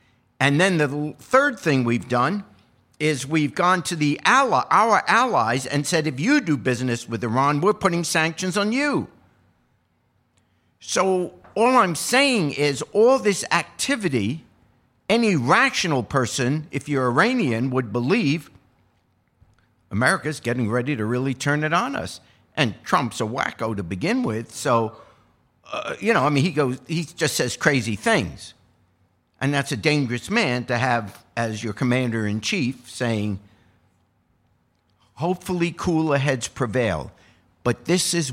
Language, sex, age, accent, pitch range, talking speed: English, male, 50-69, American, 100-150 Hz, 140 wpm